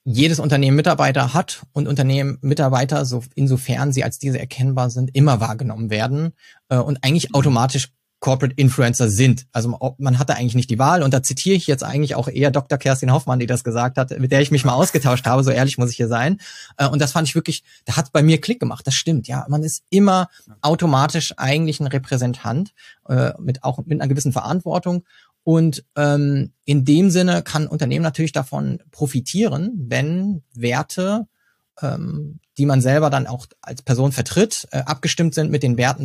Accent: German